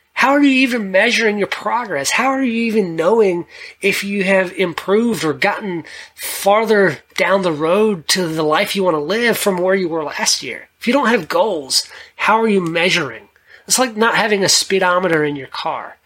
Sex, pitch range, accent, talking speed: male, 160-220 Hz, American, 200 wpm